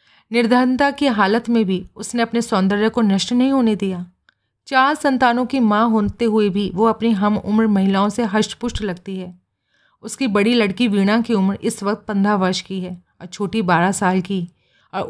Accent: native